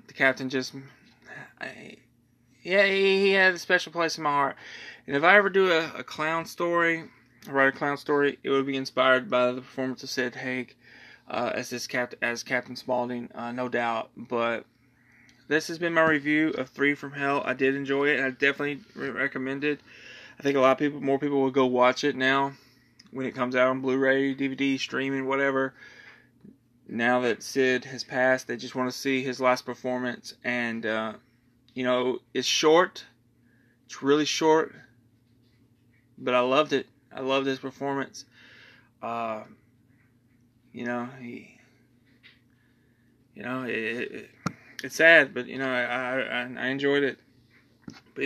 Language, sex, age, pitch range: English, male, 20-39, 125-145 Hz